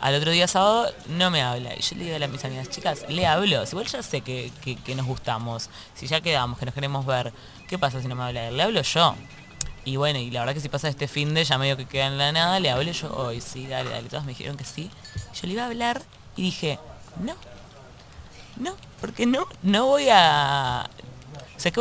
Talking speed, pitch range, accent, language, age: 245 wpm, 130-180 Hz, Argentinian, Spanish, 20-39